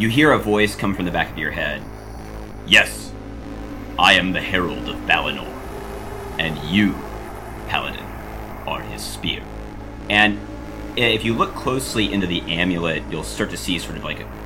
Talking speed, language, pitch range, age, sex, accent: 160 wpm, English, 75-105 Hz, 30-49, male, American